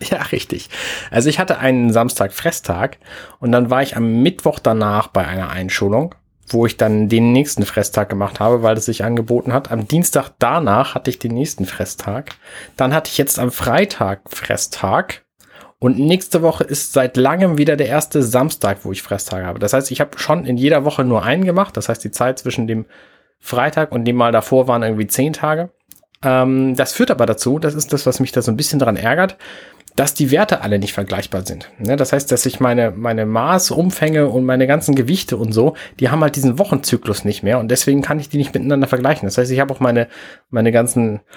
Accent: German